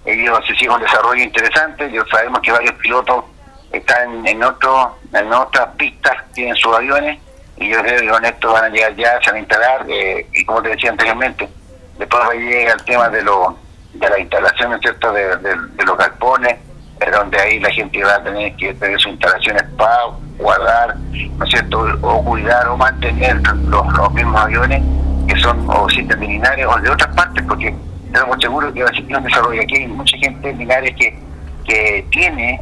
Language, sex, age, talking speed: Spanish, male, 60-79, 200 wpm